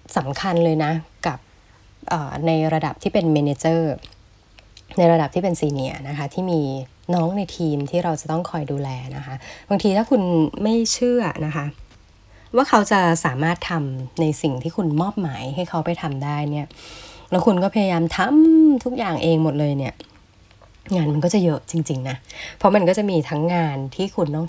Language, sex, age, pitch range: Thai, female, 20-39, 140-185 Hz